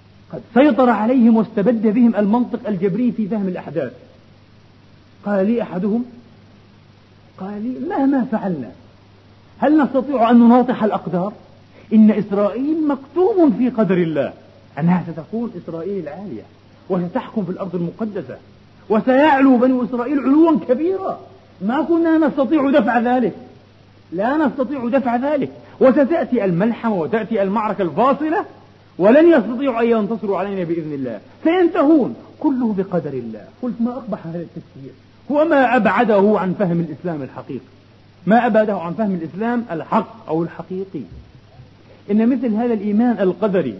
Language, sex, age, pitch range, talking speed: Arabic, male, 40-59, 175-250 Hz, 125 wpm